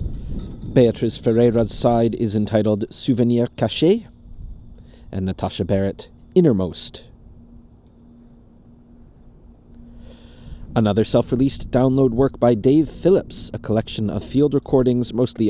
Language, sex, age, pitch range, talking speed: English, male, 30-49, 110-140 Hz, 95 wpm